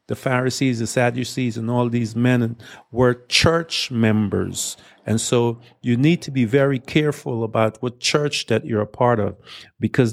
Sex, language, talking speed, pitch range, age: male, English, 165 wpm, 110-125 Hz, 50-69